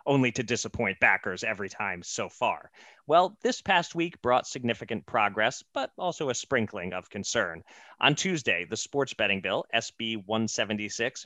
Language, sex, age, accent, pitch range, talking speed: English, male, 30-49, American, 105-130 Hz, 155 wpm